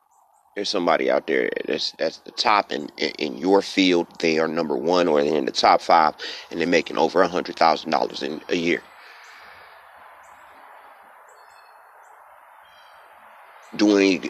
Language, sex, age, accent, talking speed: English, male, 30-49, American, 130 wpm